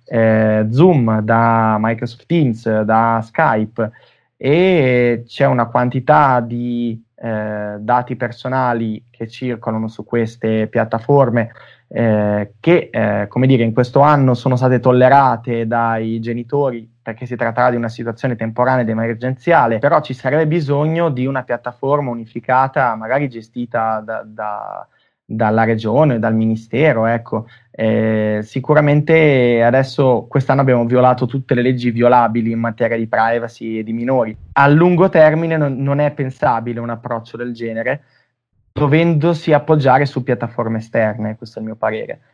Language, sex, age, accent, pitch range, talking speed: Italian, male, 20-39, native, 115-140 Hz, 135 wpm